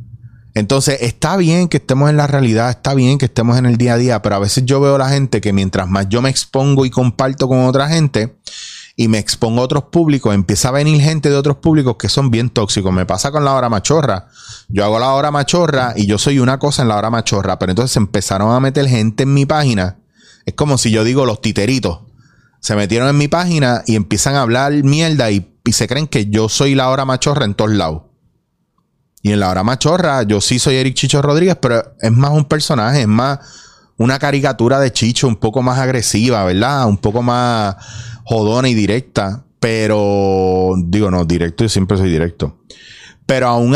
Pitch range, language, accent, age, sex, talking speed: 105-140 Hz, Spanish, Venezuelan, 30-49, male, 210 wpm